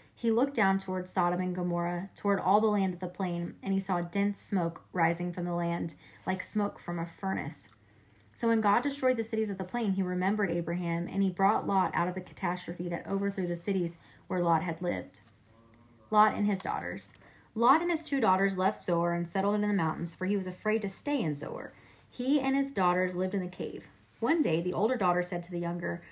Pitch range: 170-205 Hz